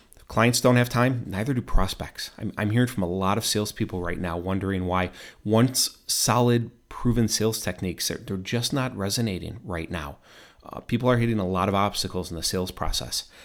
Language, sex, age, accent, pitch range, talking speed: English, male, 30-49, American, 95-120 Hz, 190 wpm